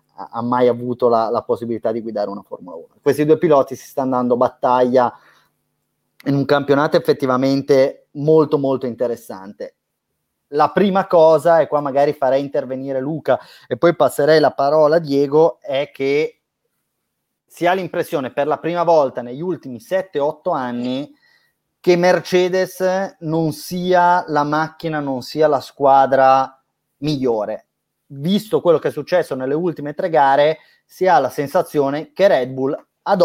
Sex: male